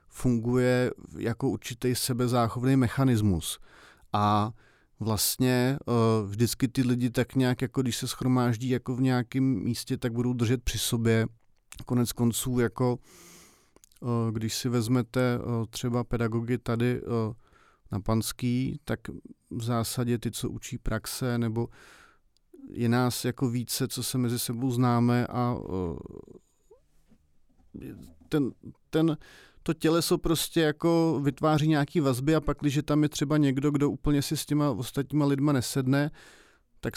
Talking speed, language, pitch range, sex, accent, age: 120 wpm, Czech, 120-135 Hz, male, native, 40-59